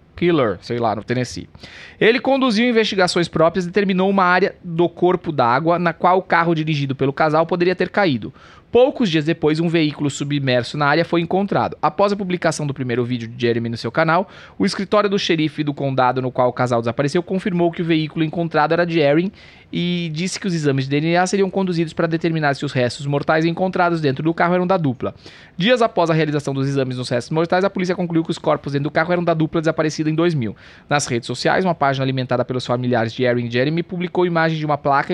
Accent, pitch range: Brazilian, 140-175 Hz